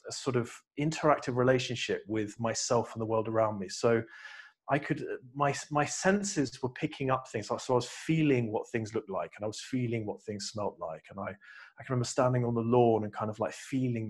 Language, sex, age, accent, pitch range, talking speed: English, male, 30-49, British, 110-140 Hz, 230 wpm